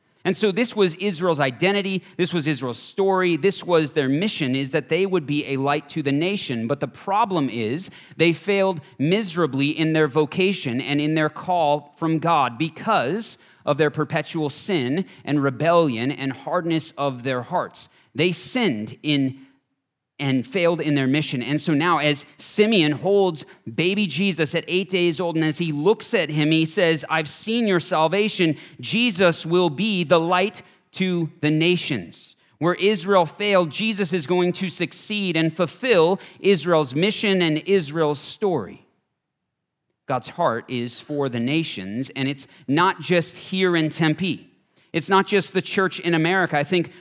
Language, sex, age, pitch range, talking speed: English, male, 40-59, 150-185 Hz, 165 wpm